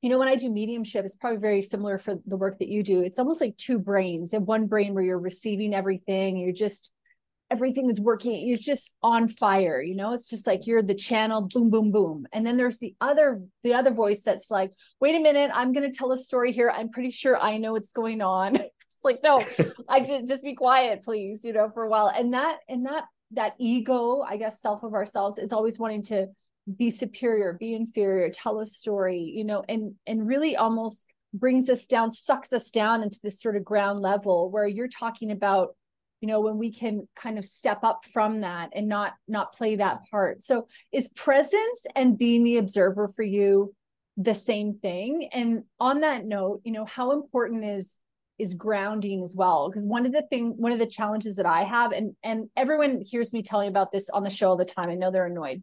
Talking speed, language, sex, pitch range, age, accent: 225 wpm, English, female, 200-245 Hz, 30-49, American